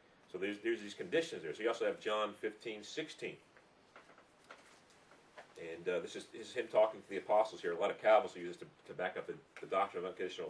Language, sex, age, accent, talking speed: English, male, 40-59, American, 230 wpm